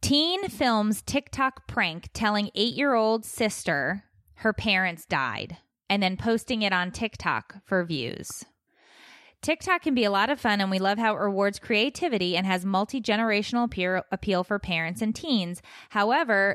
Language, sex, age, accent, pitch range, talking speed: English, female, 20-39, American, 185-245 Hz, 150 wpm